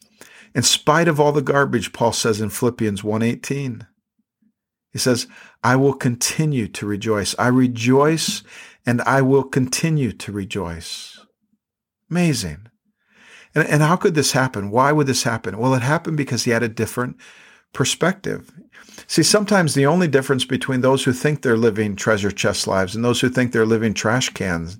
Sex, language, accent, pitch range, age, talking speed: male, English, American, 120-155 Hz, 50-69, 165 wpm